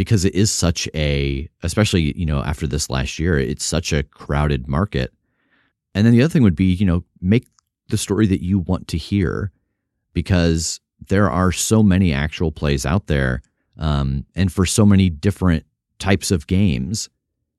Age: 30-49